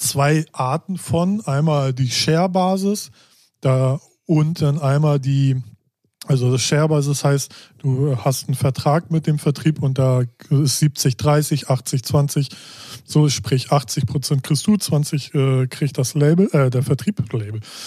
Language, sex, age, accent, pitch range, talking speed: German, male, 20-39, German, 135-160 Hz, 140 wpm